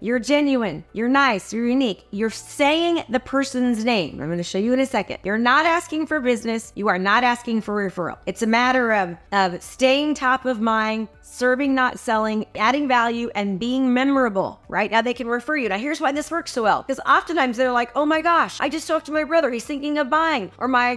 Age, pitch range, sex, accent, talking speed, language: 30-49, 205-280 Hz, female, American, 225 wpm, English